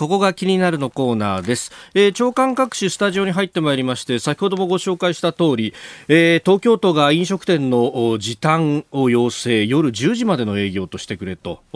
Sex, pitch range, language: male, 115-180 Hz, Japanese